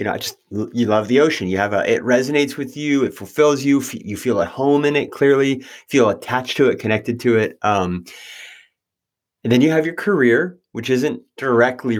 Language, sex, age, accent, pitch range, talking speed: English, male, 30-49, American, 115-145 Hz, 210 wpm